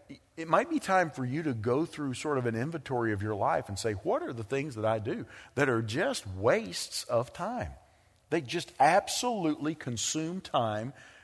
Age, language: 40-59, English